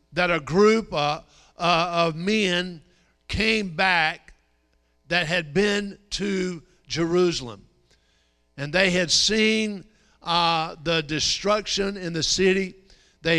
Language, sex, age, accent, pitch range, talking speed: English, male, 50-69, American, 155-190 Hz, 110 wpm